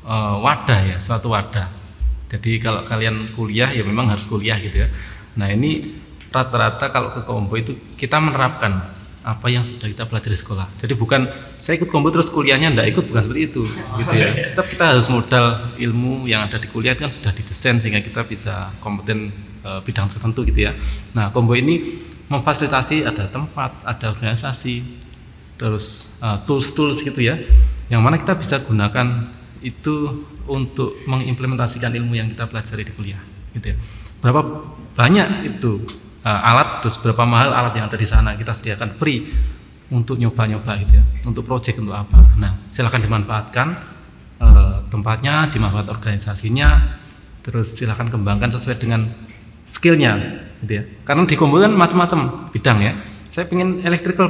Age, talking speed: 30-49, 155 wpm